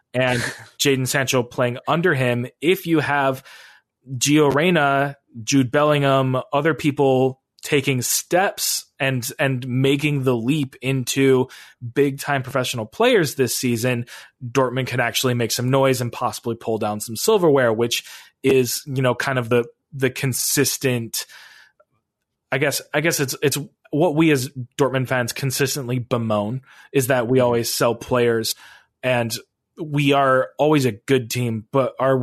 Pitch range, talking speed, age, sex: 125-145 Hz, 145 wpm, 20-39, male